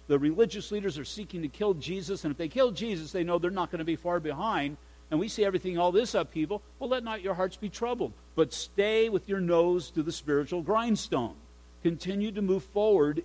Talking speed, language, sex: 220 wpm, English, male